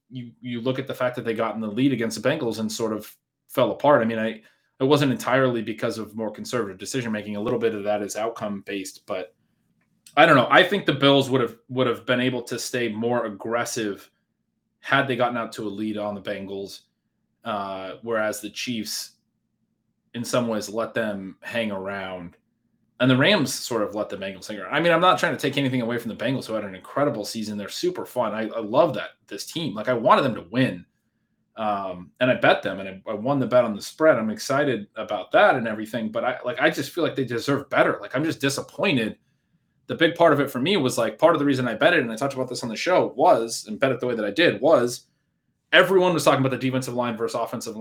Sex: male